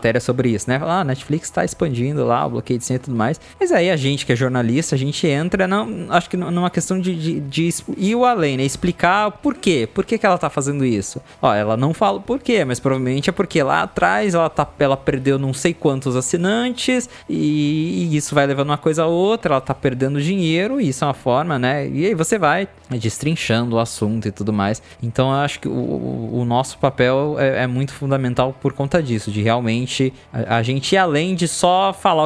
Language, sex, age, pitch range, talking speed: Portuguese, male, 20-39, 130-175 Hz, 230 wpm